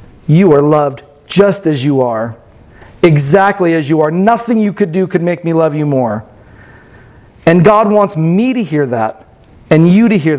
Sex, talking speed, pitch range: male, 185 wpm, 165-235 Hz